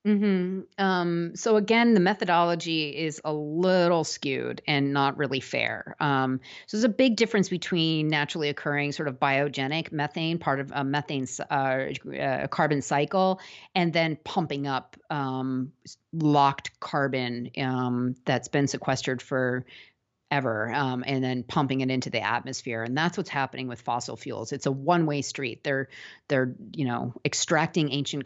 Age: 40-59